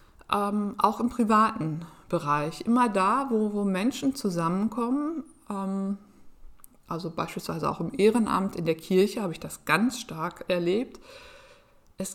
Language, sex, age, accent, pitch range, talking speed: German, female, 50-69, German, 185-235 Hz, 135 wpm